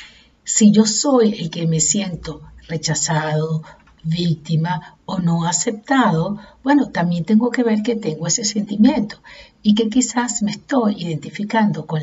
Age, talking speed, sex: 50-69, 140 wpm, female